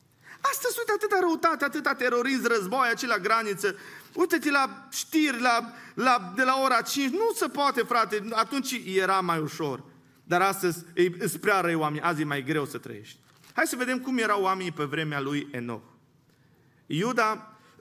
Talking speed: 170 wpm